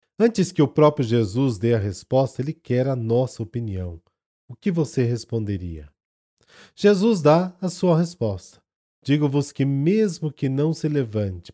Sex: male